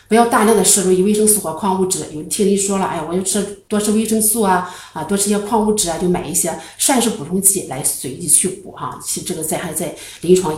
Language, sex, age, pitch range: Chinese, female, 50-69, 165-210 Hz